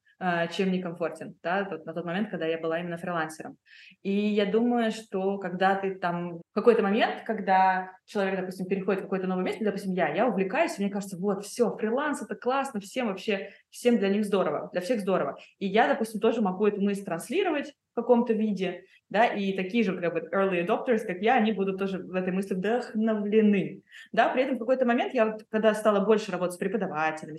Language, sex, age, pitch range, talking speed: Russian, female, 20-39, 185-225 Hz, 195 wpm